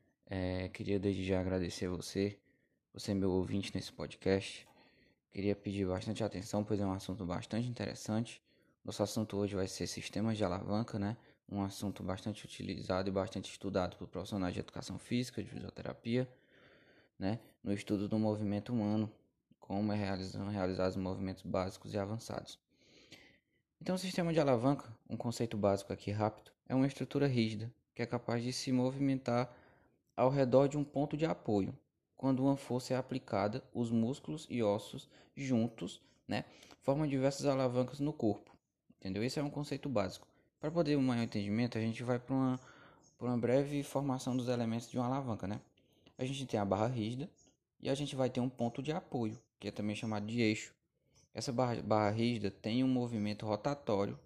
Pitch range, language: 100-130 Hz, Portuguese